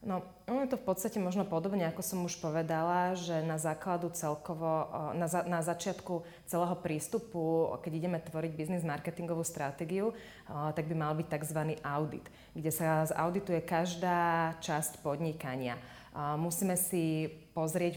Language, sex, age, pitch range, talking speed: Slovak, female, 20-39, 150-175 Hz, 135 wpm